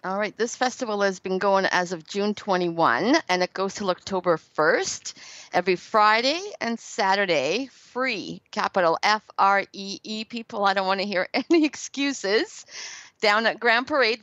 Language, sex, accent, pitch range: English, female, American, 185-225 Hz